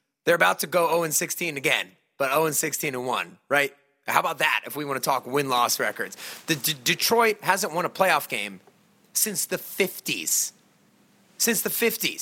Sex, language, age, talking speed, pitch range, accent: male, English, 30-49, 180 wpm, 135-185 Hz, American